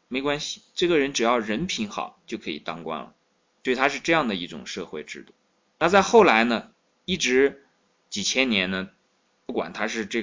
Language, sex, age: Chinese, male, 20-39